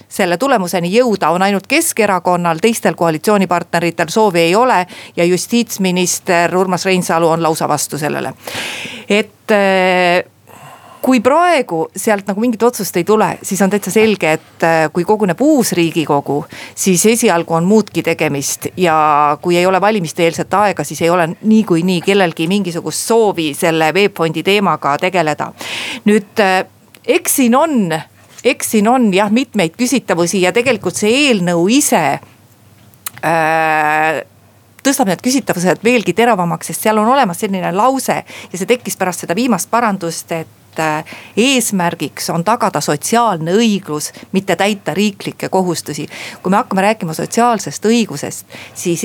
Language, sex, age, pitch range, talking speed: Finnish, female, 40-59, 165-215 Hz, 140 wpm